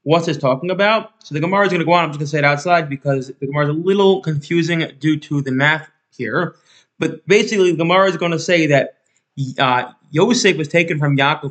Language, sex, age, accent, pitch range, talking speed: English, male, 20-39, American, 140-175 Hz, 240 wpm